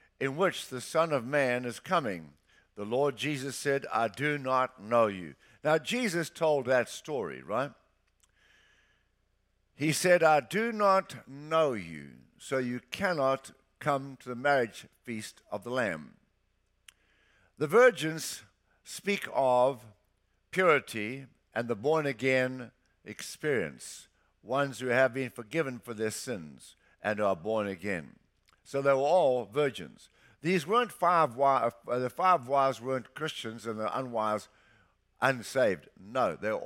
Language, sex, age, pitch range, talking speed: English, male, 60-79, 115-155 Hz, 135 wpm